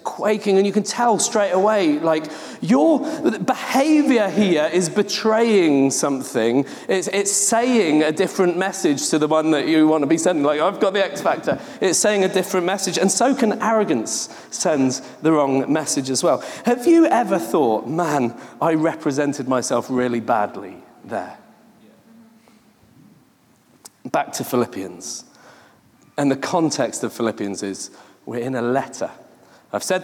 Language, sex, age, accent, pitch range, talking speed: English, male, 40-59, British, 150-235 Hz, 150 wpm